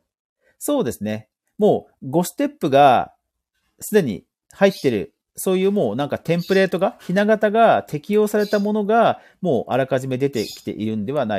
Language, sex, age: Japanese, male, 40-59